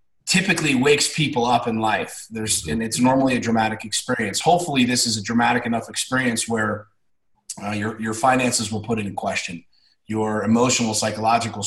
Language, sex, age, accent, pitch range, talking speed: English, male, 30-49, American, 115-145 Hz, 165 wpm